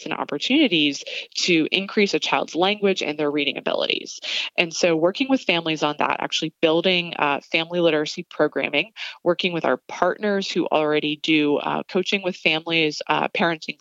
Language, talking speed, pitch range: English, 160 wpm, 155-185 Hz